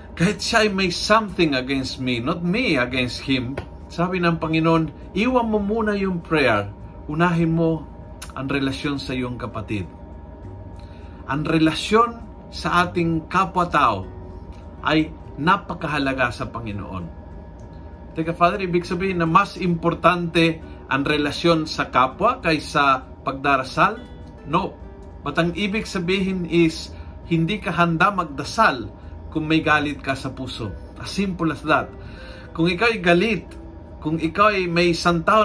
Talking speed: 130 wpm